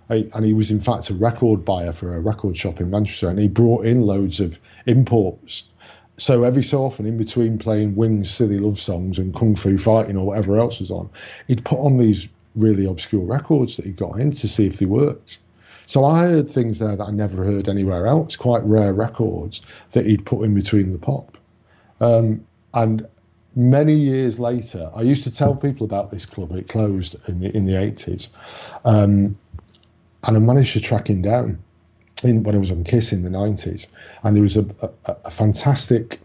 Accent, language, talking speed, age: British, English, 200 wpm, 40-59